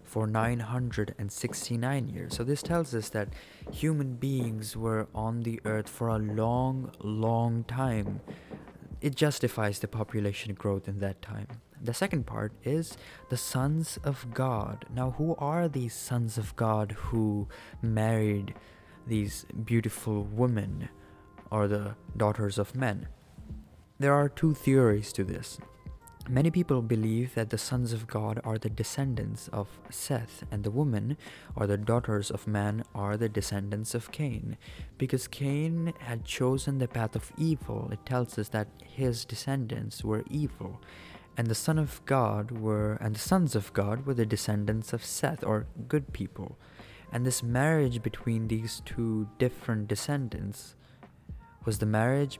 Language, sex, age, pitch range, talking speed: English, male, 20-39, 105-130 Hz, 150 wpm